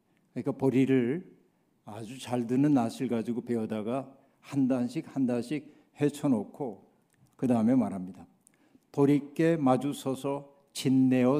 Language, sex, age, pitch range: Korean, male, 60-79, 110-140 Hz